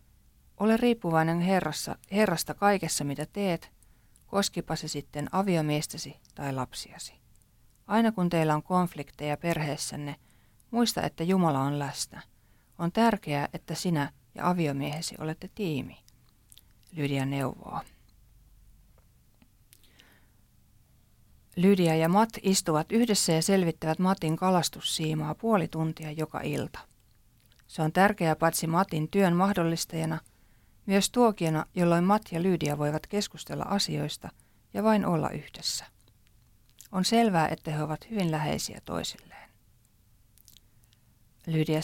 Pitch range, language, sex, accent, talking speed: 140-185 Hz, Finnish, female, native, 110 wpm